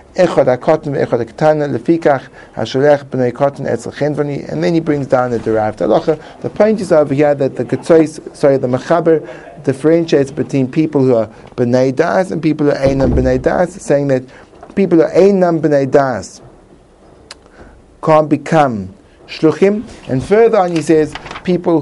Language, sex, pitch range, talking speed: English, male, 110-165 Hz, 140 wpm